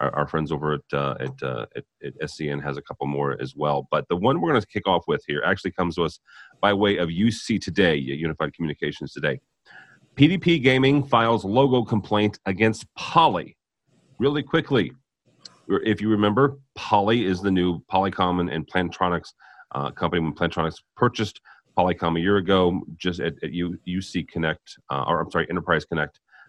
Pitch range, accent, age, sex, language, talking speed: 75-105 Hz, American, 40-59, male, English, 170 wpm